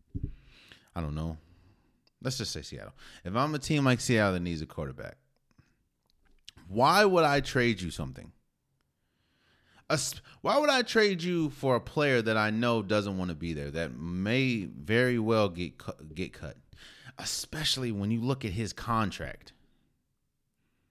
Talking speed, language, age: 155 wpm, English, 30-49